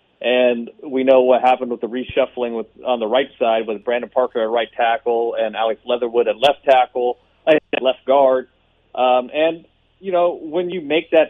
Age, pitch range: 30-49, 115-135 Hz